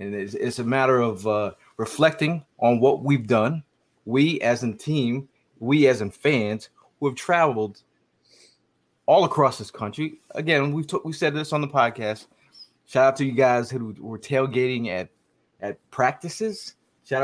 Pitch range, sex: 110-145 Hz, male